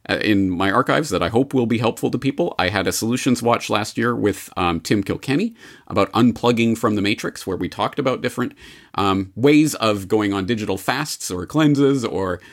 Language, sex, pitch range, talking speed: English, male, 100-130 Hz, 200 wpm